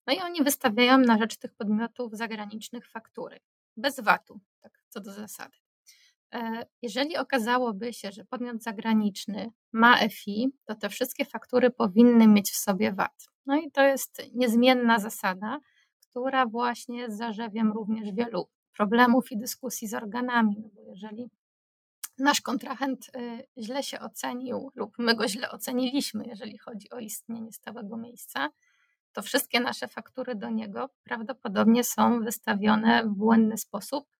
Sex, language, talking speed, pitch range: female, Polish, 140 wpm, 220-250 Hz